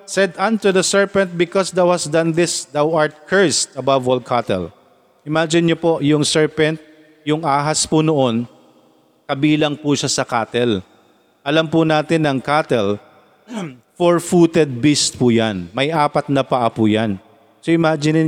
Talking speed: 150 wpm